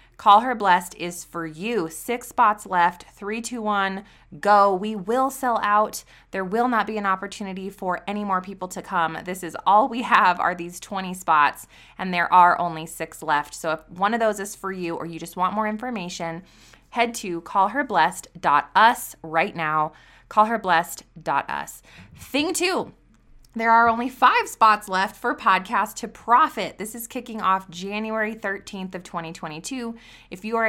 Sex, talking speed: female, 170 wpm